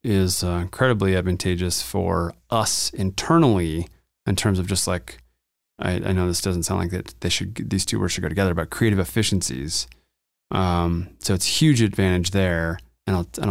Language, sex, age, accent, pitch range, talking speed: English, male, 30-49, American, 90-110 Hz, 180 wpm